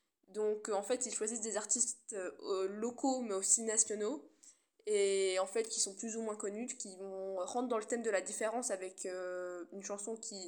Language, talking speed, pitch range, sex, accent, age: French, 205 wpm, 200-250 Hz, female, French, 10-29